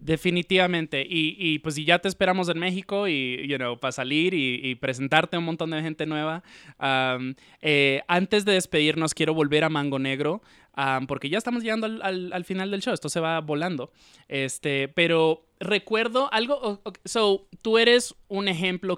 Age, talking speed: 20-39, 190 wpm